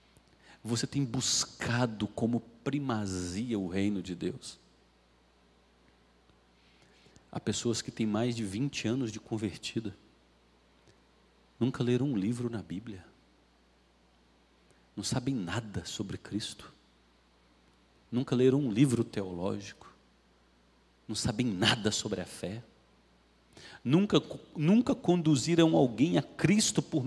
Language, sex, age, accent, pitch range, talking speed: Portuguese, male, 40-59, Brazilian, 85-130 Hz, 105 wpm